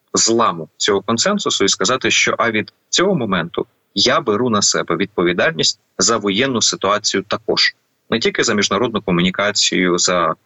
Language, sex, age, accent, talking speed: Ukrainian, male, 30-49, native, 145 wpm